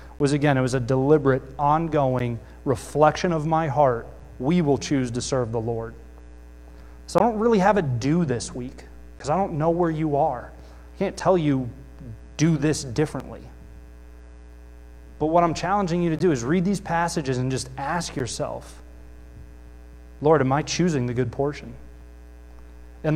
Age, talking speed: 30-49, 165 wpm